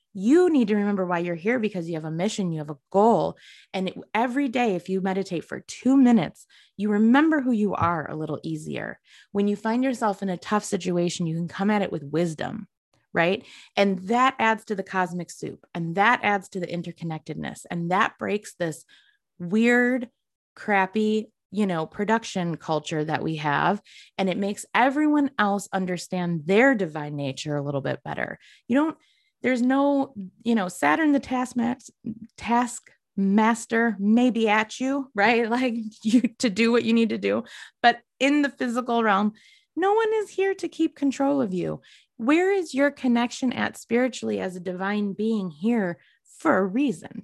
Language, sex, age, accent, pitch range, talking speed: English, female, 20-39, American, 185-250 Hz, 180 wpm